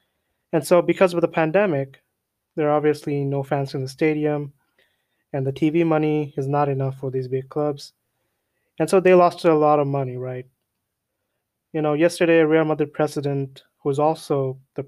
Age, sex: 20-39, male